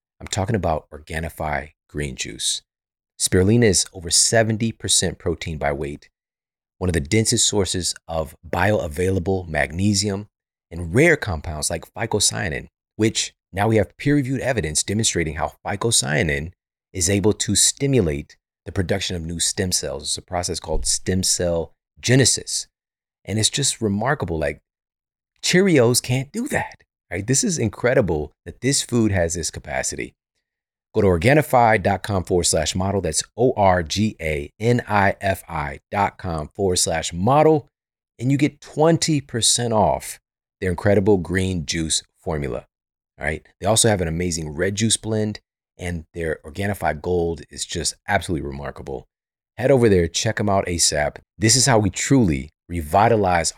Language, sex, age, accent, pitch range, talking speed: English, male, 30-49, American, 80-110 Hz, 135 wpm